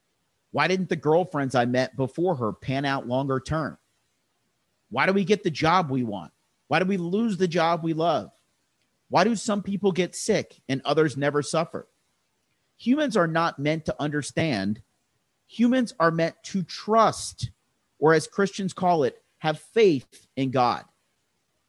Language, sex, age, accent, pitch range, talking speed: English, male, 40-59, American, 130-190 Hz, 160 wpm